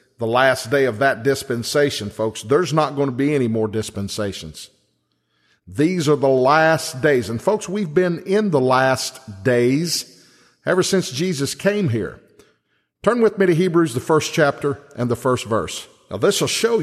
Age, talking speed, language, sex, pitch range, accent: 50-69, 175 wpm, English, male, 125-175 Hz, American